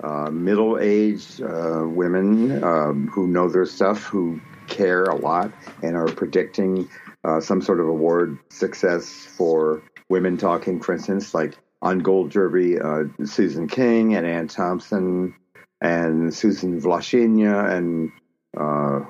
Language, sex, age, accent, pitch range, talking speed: English, male, 60-79, American, 85-120 Hz, 135 wpm